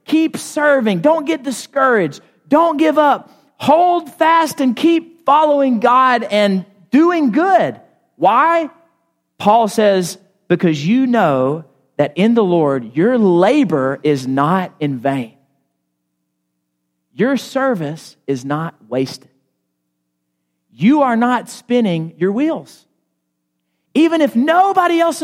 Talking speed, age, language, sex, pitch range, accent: 115 wpm, 40-59, English, male, 160-270 Hz, American